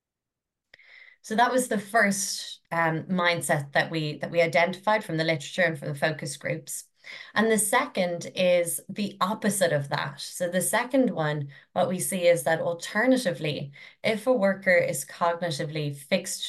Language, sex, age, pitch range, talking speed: English, female, 20-39, 160-190 Hz, 160 wpm